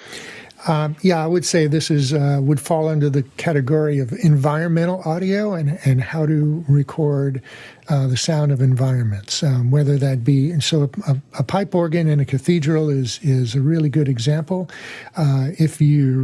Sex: male